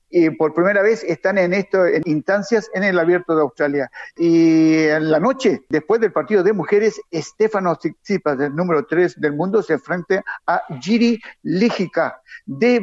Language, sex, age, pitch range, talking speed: Spanish, male, 50-69, 165-210 Hz, 170 wpm